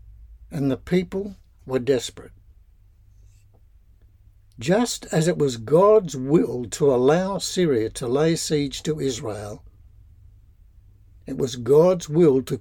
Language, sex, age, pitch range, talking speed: English, male, 60-79, 100-155 Hz, 115 wpm